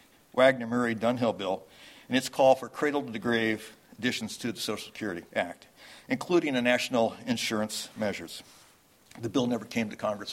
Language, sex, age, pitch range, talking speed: English, male, 60-79, 115-130 Hz, 165 wpm